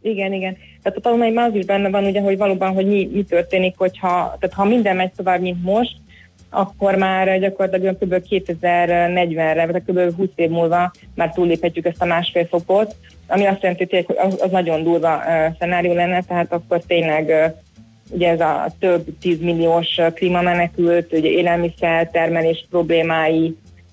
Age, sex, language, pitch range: 20-39, female, Hungarian, 165-185 Hz